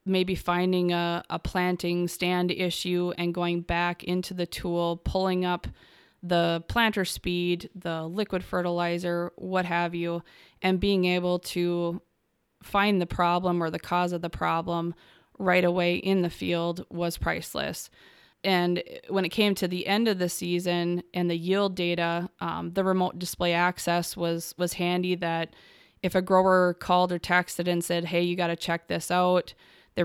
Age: 20-39